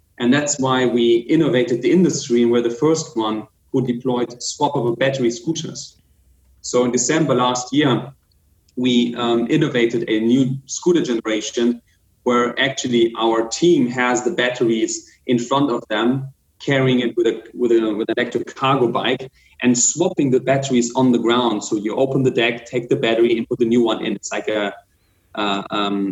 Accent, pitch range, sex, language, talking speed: German, 115-135 Hz, male, English, 175 wpm